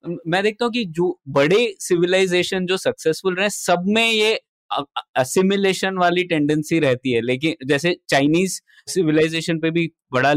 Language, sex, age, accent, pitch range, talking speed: Hindi, male, 20-39, native, 140-185 Hz, 125 wpm